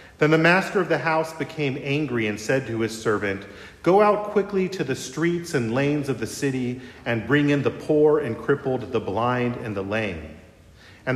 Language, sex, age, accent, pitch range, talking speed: English, male, 40-59, American, 120-155 Hz, 200 wpm